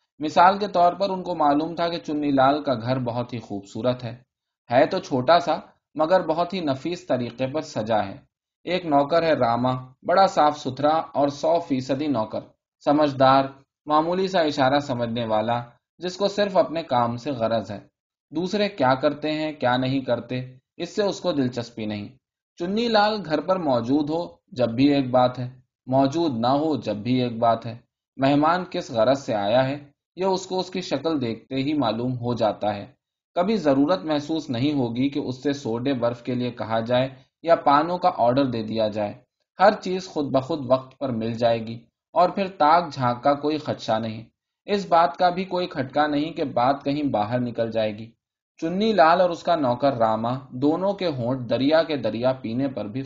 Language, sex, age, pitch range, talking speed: Urdu, male, 20-39, 120-165 Hz, 195 wpm